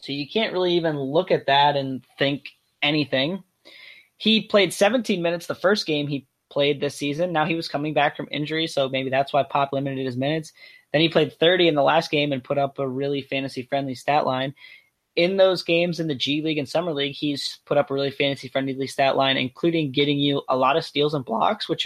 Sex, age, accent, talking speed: male, 20-39, American, 220 wpm